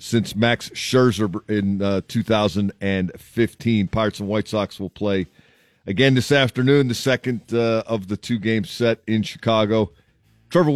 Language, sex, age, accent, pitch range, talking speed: English, male, 40-59, American, 100-120 Hz, 140 wpm